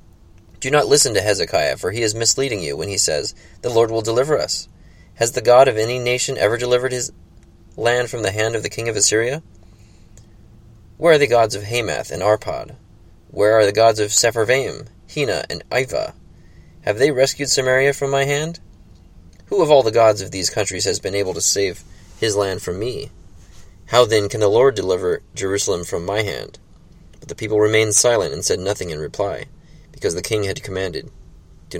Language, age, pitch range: English, 20-39, 90-130 Hz